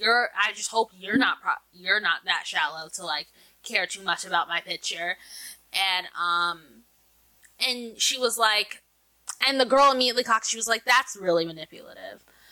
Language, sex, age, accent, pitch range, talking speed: English, female, 10-29, American, 185-250 Hz, 175 wpm